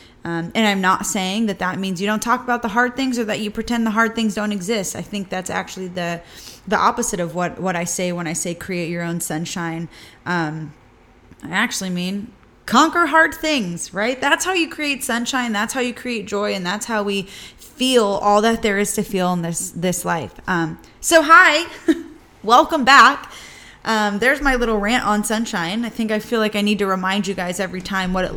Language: English